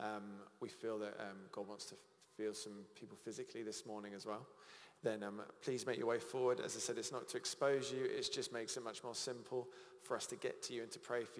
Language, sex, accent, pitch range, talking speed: English, male, British, 105-125 Hz, 255 wpm